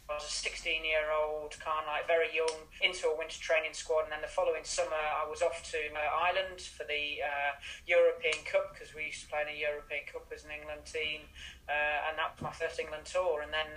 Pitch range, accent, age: 150-175 Hz, British, 30-49